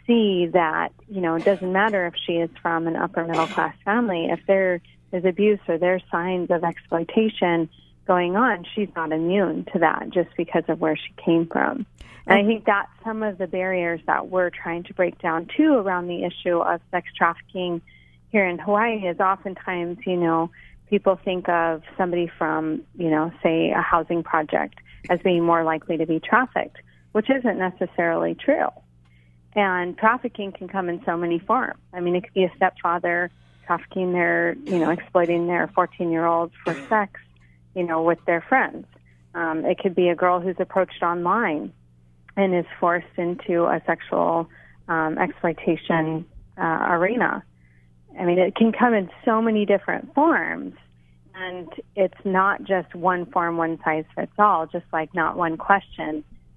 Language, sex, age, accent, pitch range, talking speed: English, female, 30-49, American, 165-190 Hz, 170 wpm